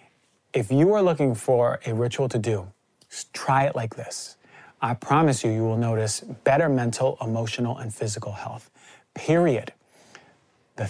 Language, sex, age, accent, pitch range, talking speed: English, male, 30-49, American, 115-135 Hz, 150 wpm